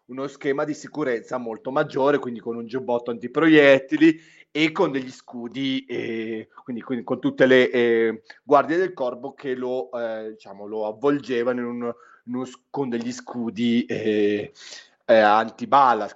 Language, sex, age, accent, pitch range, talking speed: Italian, male, 30-49, native, 120-145 Hz, 150 wpm